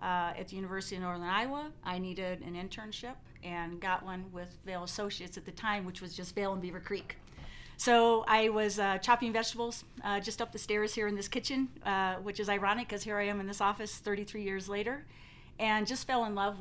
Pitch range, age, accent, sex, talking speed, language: 180-205 Hz, 40-59, American, female, 220 wpm, English